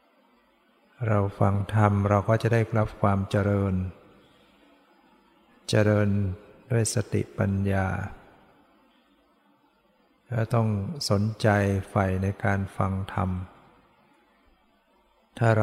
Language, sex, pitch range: Thai, male, 100-110 Hz